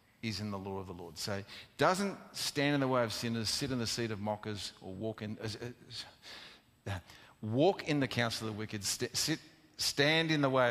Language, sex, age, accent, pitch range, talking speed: English, male, 50-69, Australian, 110-145 Hz, 220 wpm